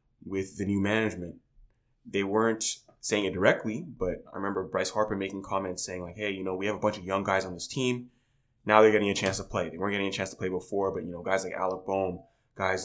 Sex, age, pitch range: male, 20-39, 95-115 Hz